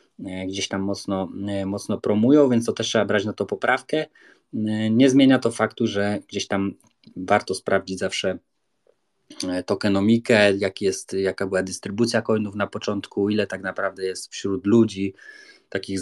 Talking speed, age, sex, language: 145 wpm, 20-39, male, Polish